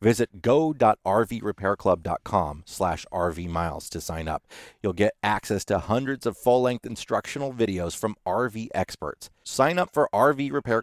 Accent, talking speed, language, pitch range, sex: American, 135 wpm, English, 90-125 Hz, male